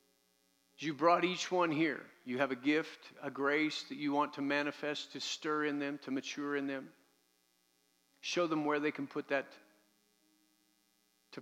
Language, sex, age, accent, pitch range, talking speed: English, male, 50-69, American, 105-150 Hz, 170 wpm